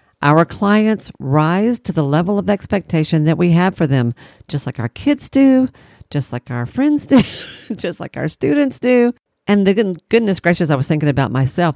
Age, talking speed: 50-69, 190 wpm